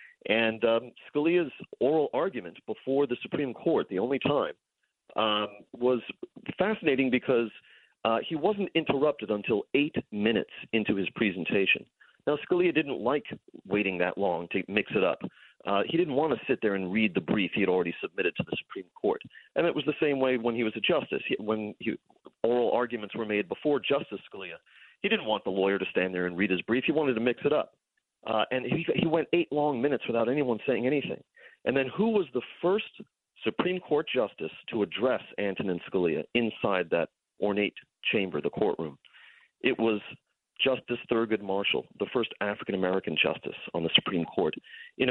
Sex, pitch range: male, 105-150 Hz